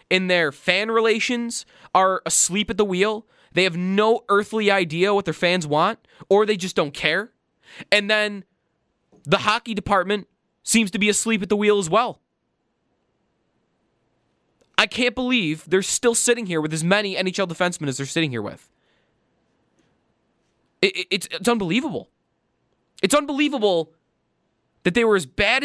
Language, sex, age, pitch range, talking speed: English, male, 20-39, 180-240 Hz, 155 wpm